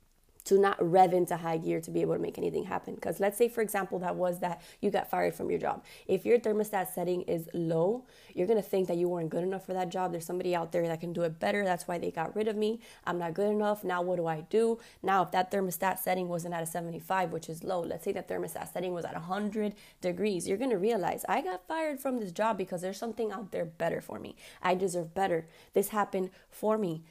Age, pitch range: 20-39, 175-200 Hz